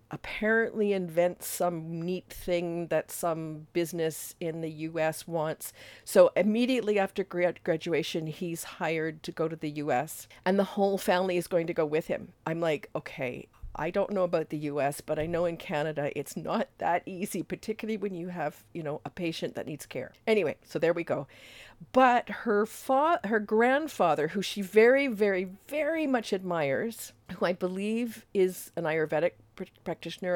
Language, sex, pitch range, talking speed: English, female, 160-205 Hz, 170 wpm